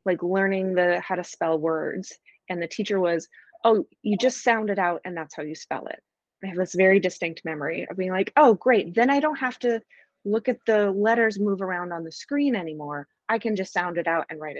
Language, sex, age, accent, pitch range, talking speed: English, female, 30-49, American, 160-215 Hz, 235 wpm